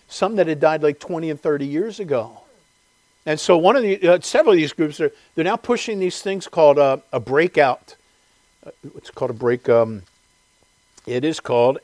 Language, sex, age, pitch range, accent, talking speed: English, male, 50-69, 140-190 Hz, American, 195 wpm